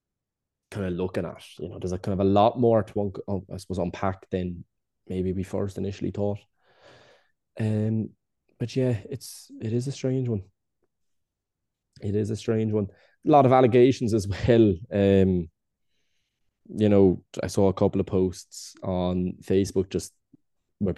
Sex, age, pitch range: male, 20-39, 90-105 Hz